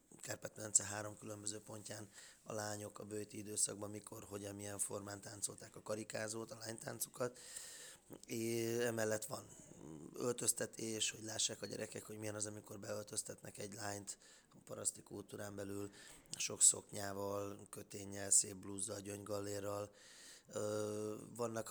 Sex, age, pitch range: male, 20-39, 105-110 Hz